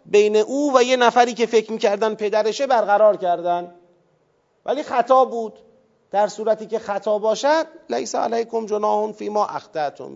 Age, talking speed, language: 40-59, 150 wpm, Persian